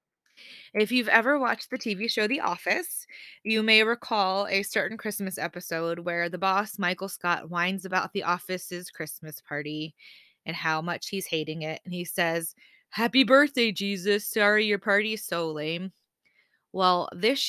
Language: English